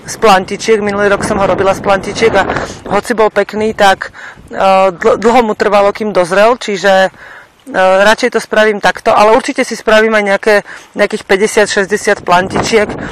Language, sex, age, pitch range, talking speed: Slovak, female, 40-59, 180-205 Hz, 160 wpm